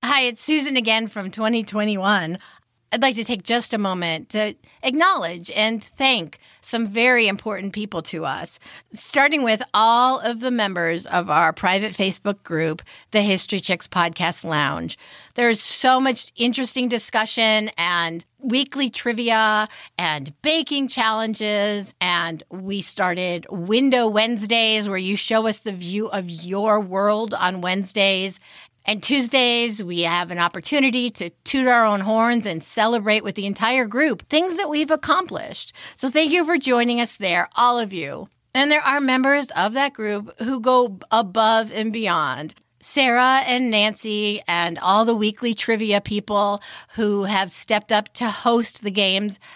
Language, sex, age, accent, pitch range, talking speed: English, female, 40-59, American, 195-245 Hz, 155 wpm